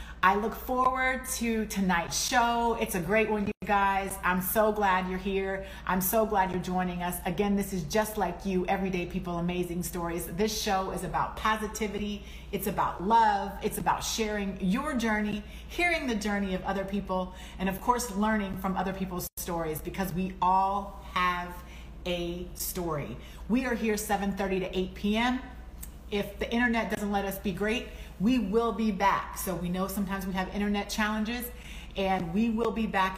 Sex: female